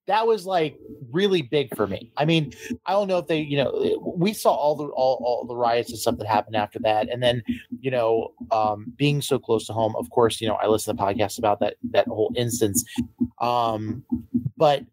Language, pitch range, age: English, 120-160 Hz, 30-49